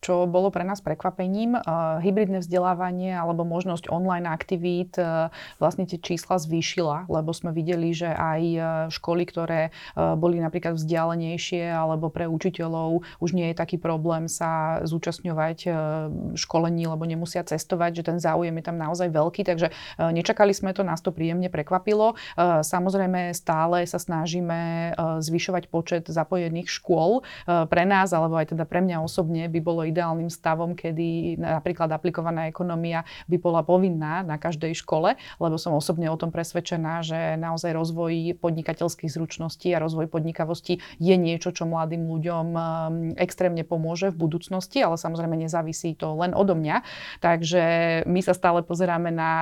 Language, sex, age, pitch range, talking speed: Slovak, female, 30-49, 165-175 Hz, 145 wpm